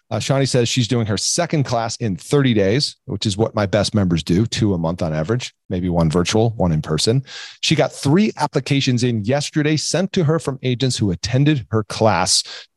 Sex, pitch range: male, 105-130 Hz